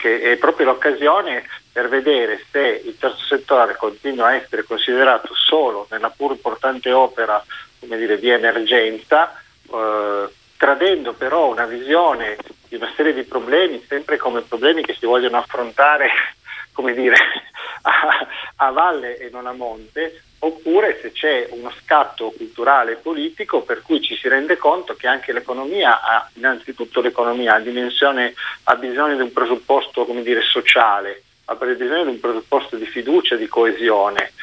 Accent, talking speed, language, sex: native, 150 wpm, Italian, male